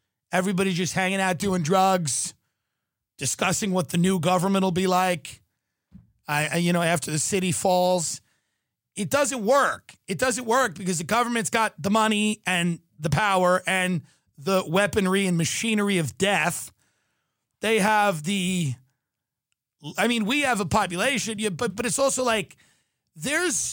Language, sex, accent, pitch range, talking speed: English, male, American, 160-235 Hz, 150 wpm